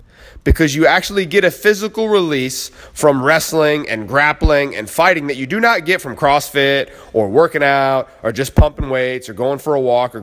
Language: English